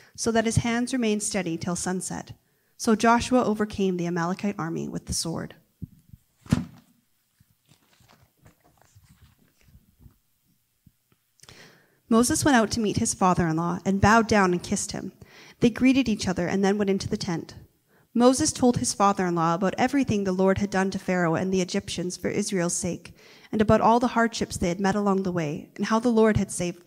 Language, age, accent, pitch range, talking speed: English, 30-49, American, 185-230 Hz, 170 wpm